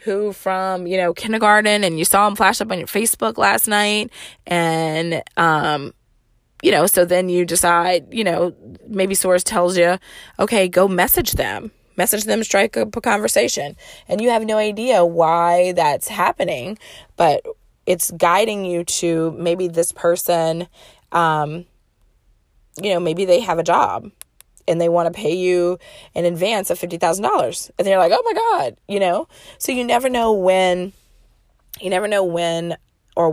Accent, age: American, 20-39